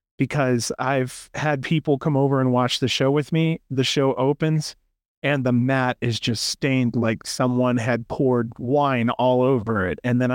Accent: American